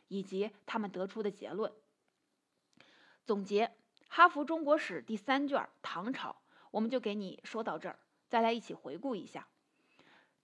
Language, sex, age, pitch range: Chinese, female, 30-49, 200-275 Hz